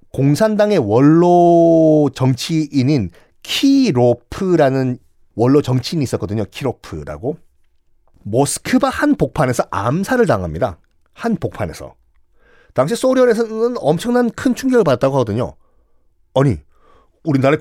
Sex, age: male, 40-59